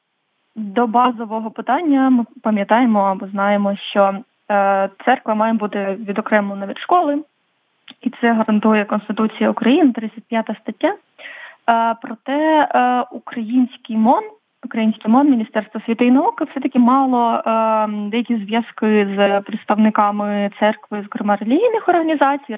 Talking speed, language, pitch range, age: 115 wpm, English, 210-250 Hz, 20-39